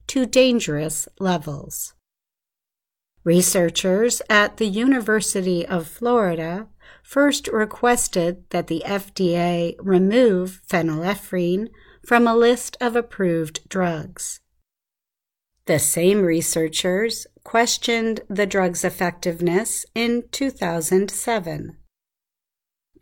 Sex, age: female, 50-69